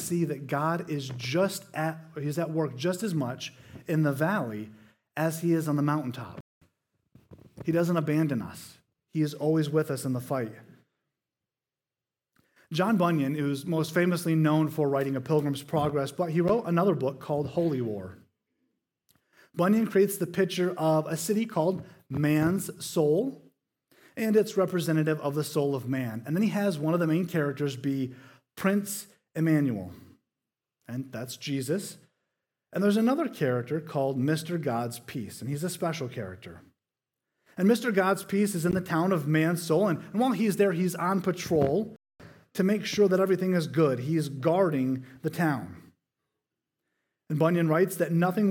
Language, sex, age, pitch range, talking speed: English, male, 30-49, 140-185 Hz, 165 wpm